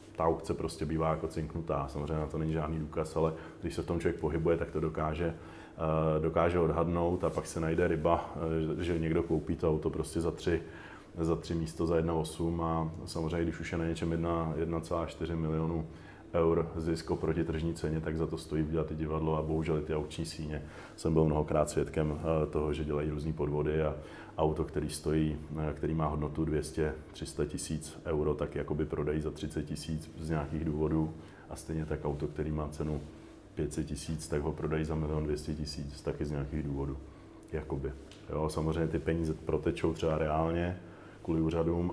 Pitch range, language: 80-85 Hz, Slovak